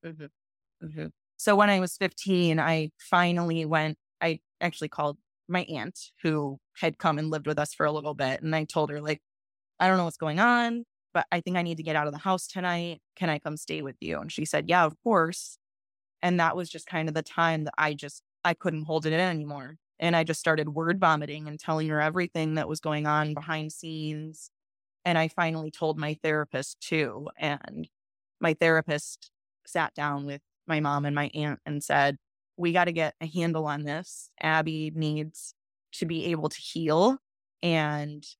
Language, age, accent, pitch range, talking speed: English, 20-39, American, 150-175 Hz, 205 wpm